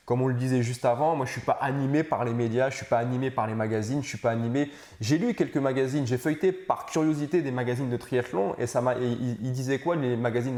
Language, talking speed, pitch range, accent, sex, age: French, 255 wpm, 115-135 Hz, French, male, 20-39